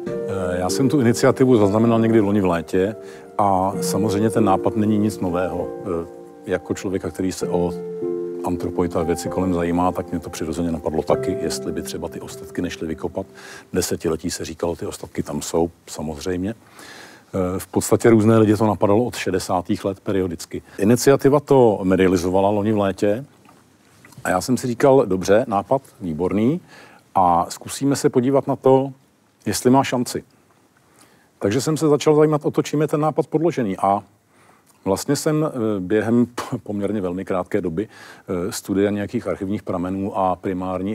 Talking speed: 155 wpm